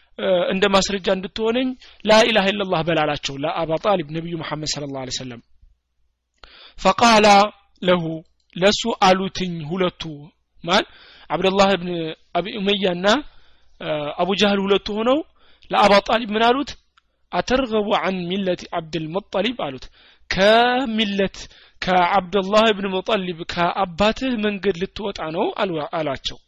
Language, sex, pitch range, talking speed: Amharic, male, 170-210 Hz, 120 wpm